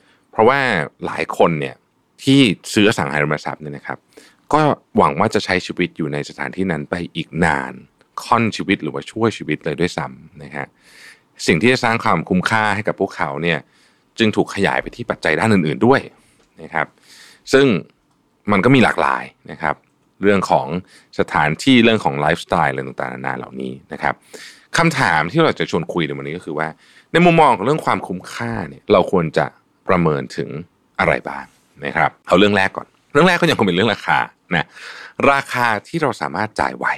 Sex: male